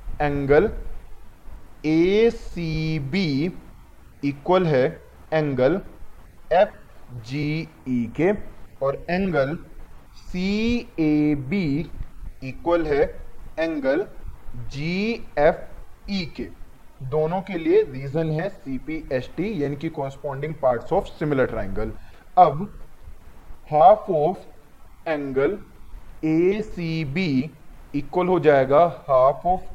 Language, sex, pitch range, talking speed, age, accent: Hindi, male, 140-180 Hz, 80 wpm, 30-49, native